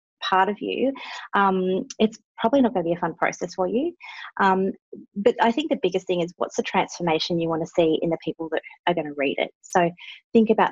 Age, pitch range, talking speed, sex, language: 30-49, 170-200 Hz, 235 wpm, female, English